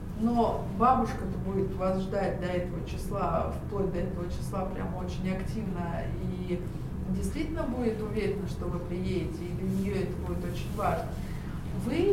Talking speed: 150 wpm